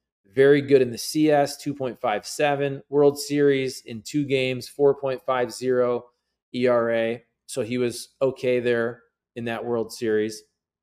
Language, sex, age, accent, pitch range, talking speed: English, male, 30-49, American, 115-140 Hz, 120 wpm